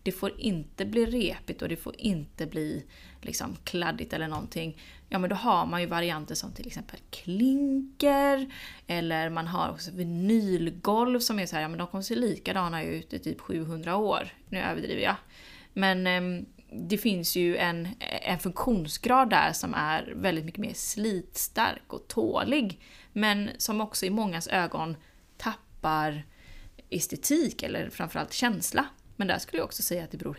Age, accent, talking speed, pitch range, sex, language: 20-39, native, 170 wpm, 170-225 Hz, female, Swedish